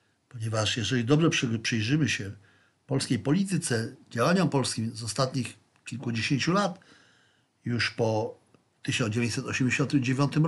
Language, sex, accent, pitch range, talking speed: Polish, male, native, 120-150 Hz, 90 wpm